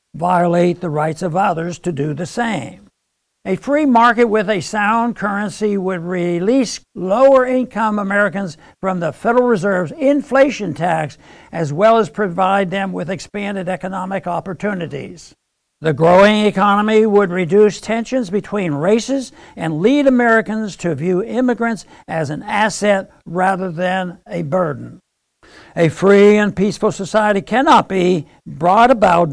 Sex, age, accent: male, 60-79, American